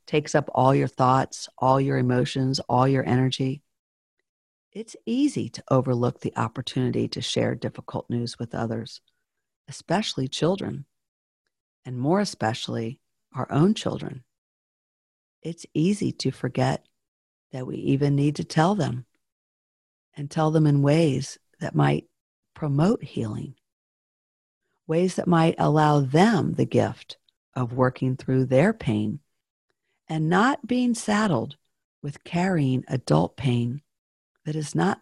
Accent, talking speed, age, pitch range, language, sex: American, 125 wpm, 50-69, 125-170 Hz, English, female